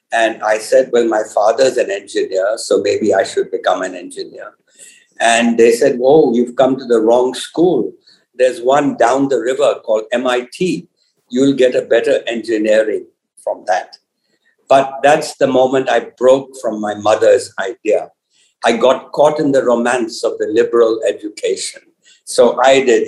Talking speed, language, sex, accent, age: 160 wpm, Hindi, male, native, 50-69